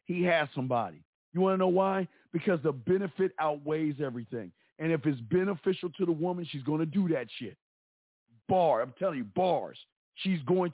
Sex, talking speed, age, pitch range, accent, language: male, 185 wpm, 50-69, 150-190 Hz, American, English